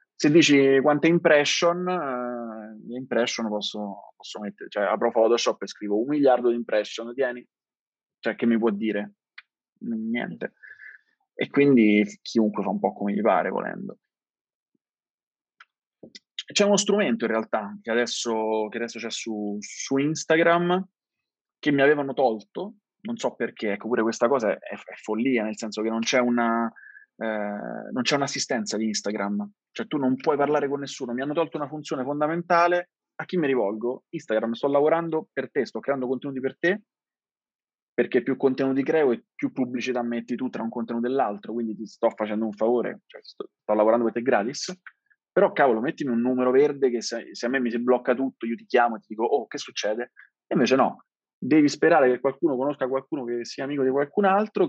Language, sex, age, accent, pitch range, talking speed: Italian, male, 20-39, native, 115-150 Hz, 180 wpm